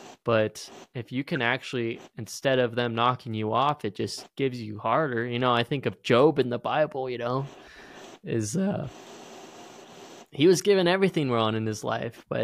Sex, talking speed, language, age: male, 185 wpm, English, 20-39